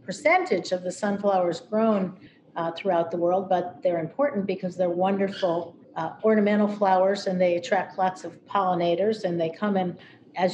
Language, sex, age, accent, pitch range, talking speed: English, female, 50-69, American, 180-210 Hz, 165 wpm